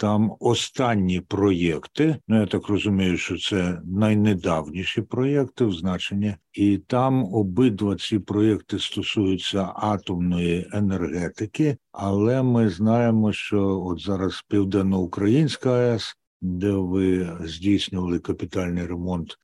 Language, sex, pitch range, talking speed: Ukrainian, male, 90-115 Hz, 105 wpm